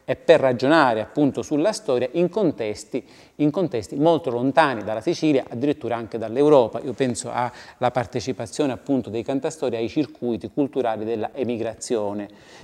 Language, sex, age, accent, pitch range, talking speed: English, male, 30-49, Italian, 115-135 Hz, 145 wpm